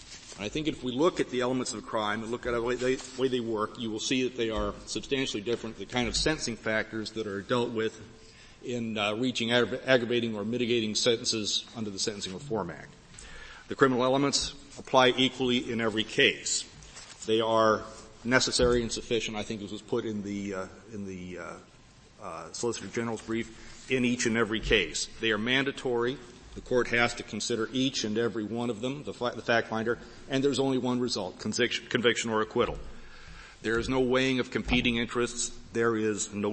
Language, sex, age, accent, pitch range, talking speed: English, male, 40-59, American, 110-125 Hz, 190 wpm